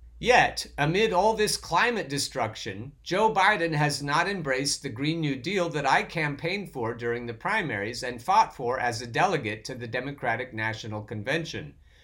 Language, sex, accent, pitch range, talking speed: English, male, American, 120-165 Hz, 165 wpm